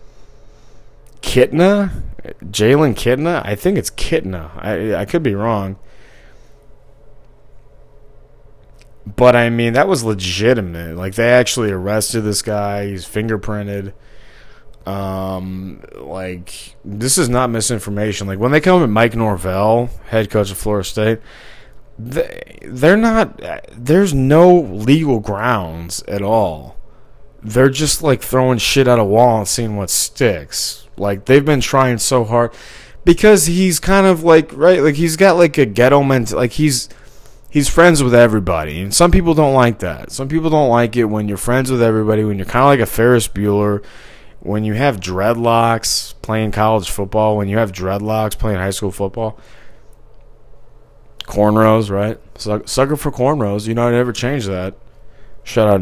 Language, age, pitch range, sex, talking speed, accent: English, 30-49, 105-140 Hz, male, 155 wpm, American